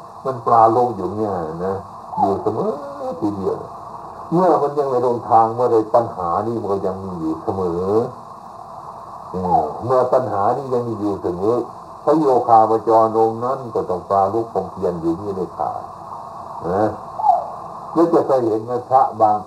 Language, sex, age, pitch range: Thai, male, 60-79, 100-145 Hz